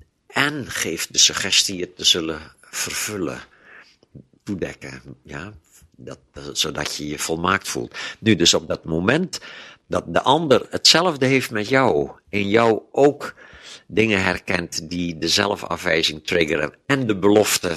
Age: 60-79